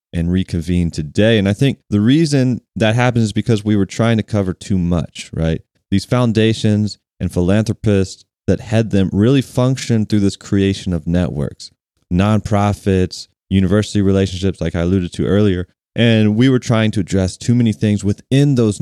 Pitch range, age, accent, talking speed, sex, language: 90-115 Hz, 30-49, American, 170 wpm, male, English